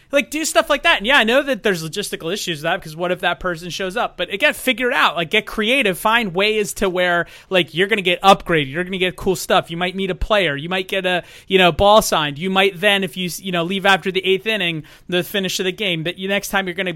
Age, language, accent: 30-49, English, American